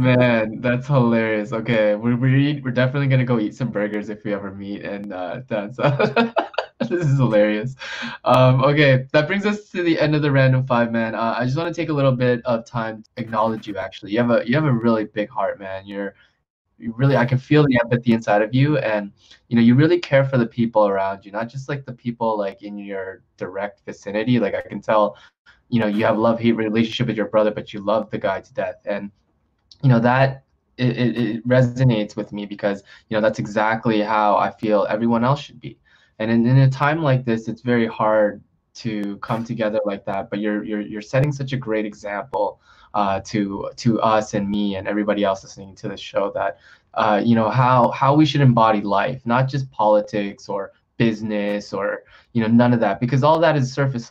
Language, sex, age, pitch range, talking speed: English, male, 20-39, 105-130 Hz, 220 wpm